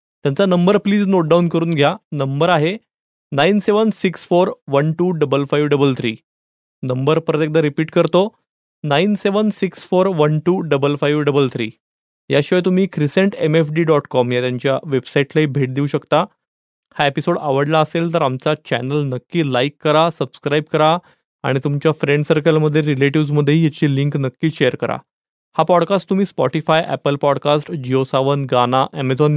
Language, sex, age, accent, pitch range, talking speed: Marathi, male, 20-39, native, 145-175 Hz, 140 wpm